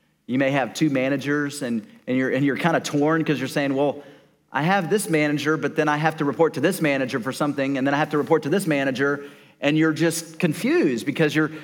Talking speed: 240 wpm